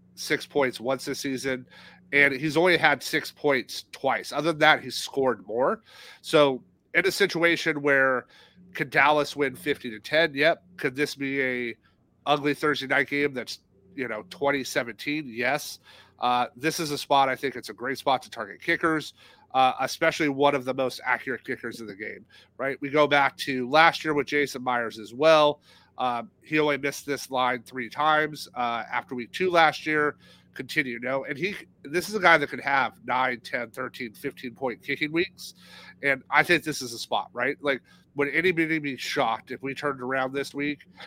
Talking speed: 195 wpm